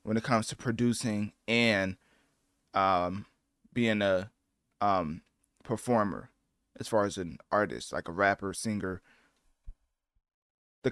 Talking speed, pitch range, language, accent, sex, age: 115 wpm, 105-130 Hz, English, American, male, 20-39